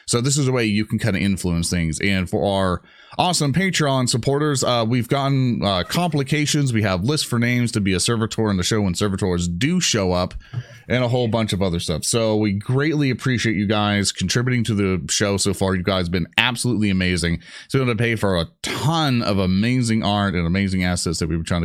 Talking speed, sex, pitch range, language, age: 230 wpm, male, 95-125 Hz, English, 30-49